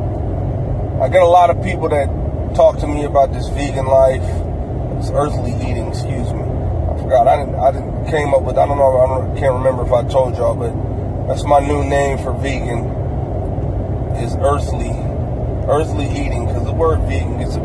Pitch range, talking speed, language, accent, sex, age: 105-130 Hz, 190 wpm, English, American, male, 30-49